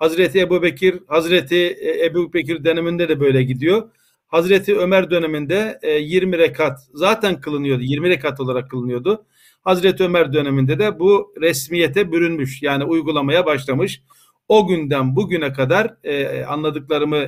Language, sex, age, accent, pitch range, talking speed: Turkish, male, 50-69, native, 140-180 Hz, 120 wpm